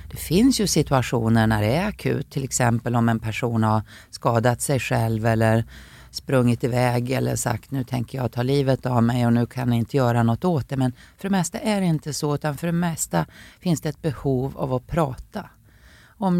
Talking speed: 210 wpm